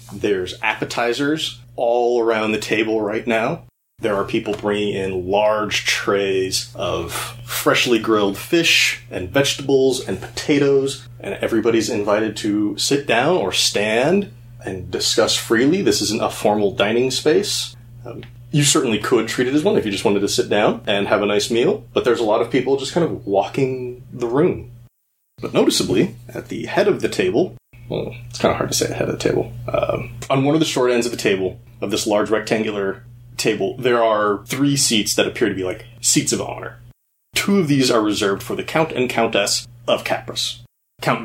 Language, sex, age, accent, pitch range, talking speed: English, male, 30-49, American, 110-130 Hz, 190 wpm